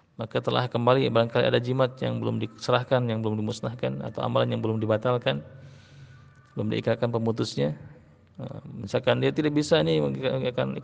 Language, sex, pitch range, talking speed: Malay, male, 110-130 Hz, 150 wpm